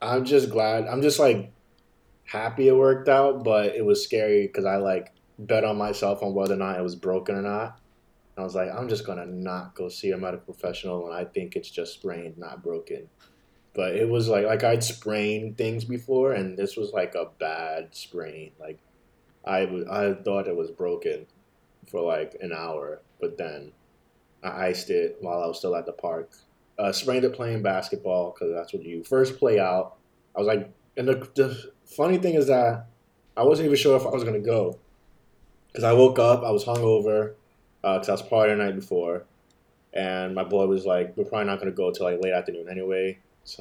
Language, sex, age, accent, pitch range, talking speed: English, male, 20-39, American, 95-135 Hz, 210 wpm